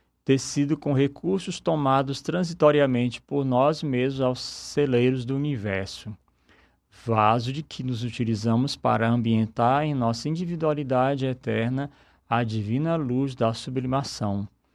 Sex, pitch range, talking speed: male, 115-140 Hz, 115 wpm